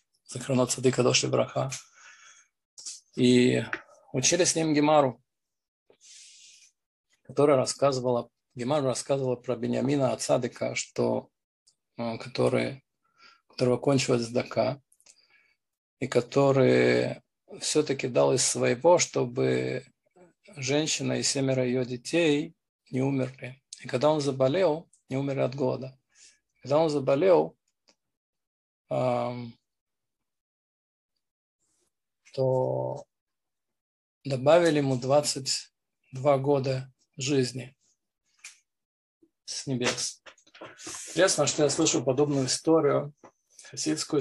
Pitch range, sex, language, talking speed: 125-145 Hz, male, Russian, 85 wpm